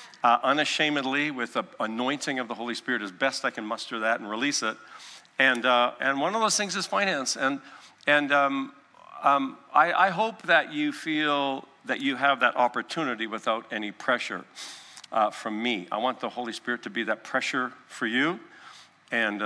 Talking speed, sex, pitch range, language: 185 wpm, male, 110-140 Hz, English